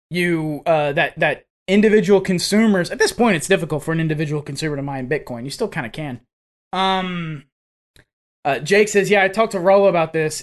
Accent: American